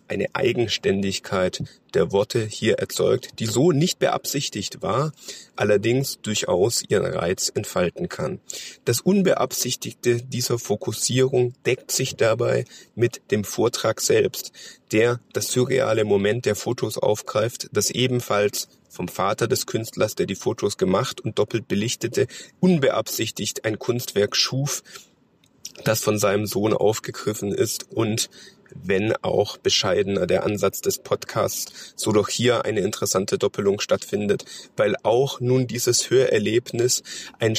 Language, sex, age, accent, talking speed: German, male, 30-49, German, 125 wpm